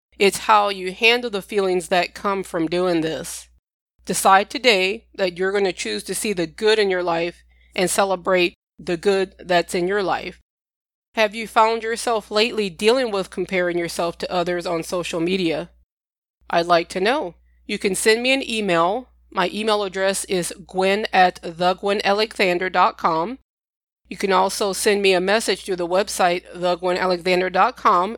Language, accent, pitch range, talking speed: English, American, 180-215 Hz, 160 wpm